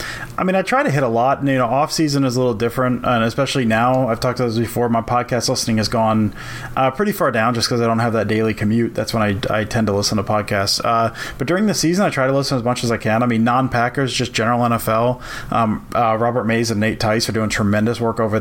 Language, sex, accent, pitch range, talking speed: English, male, American, 110-130 Hz, 265 wpm